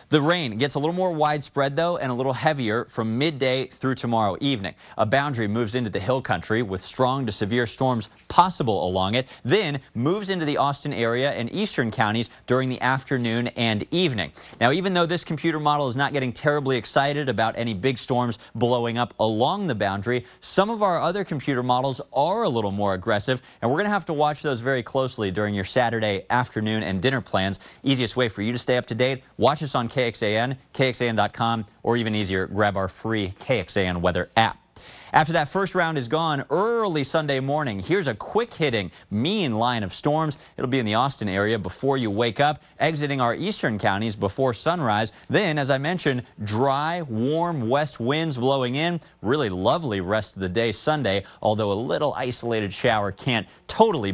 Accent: American